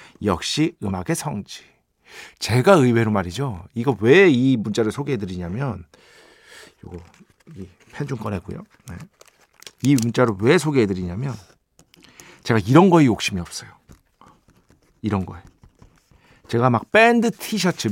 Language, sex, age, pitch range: Korean, male, 50-69, 105-165 Hz